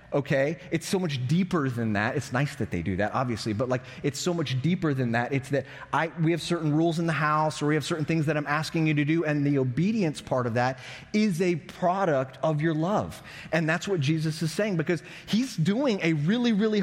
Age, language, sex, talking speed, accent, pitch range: 30-49, English, male, 240 wpm, American, 130-180 Hz